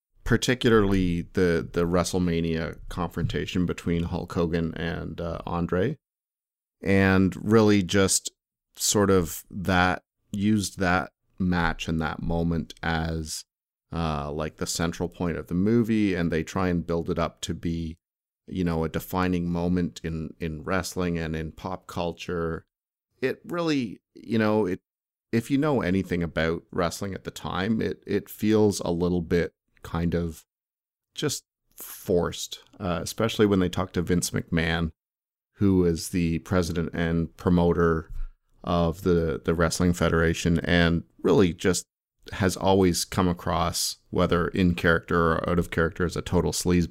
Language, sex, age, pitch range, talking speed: English, male, 40-59, 85-95 Hz, 145 wpm